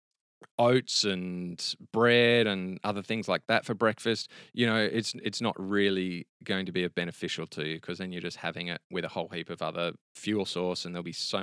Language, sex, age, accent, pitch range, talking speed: English, male, 20-39, Australian, 95-120 Hz, 215 wpm